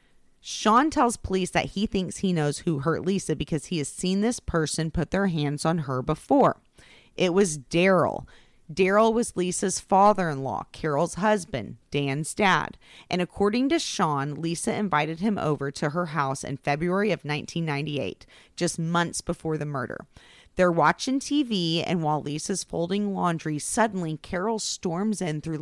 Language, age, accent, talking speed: English, 30-49, American, 155 wpm